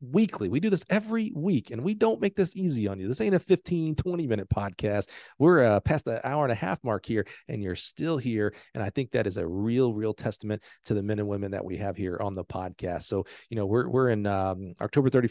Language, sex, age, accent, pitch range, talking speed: English, male, 40-59, American, 105-135 Hz, 250 wpm